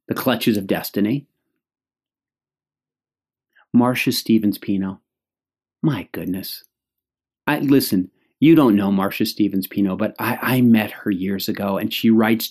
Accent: American